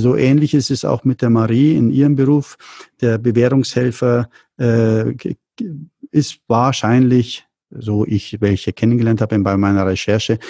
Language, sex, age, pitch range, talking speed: German, male, 50-69, 110-130 Hz, 130 wpm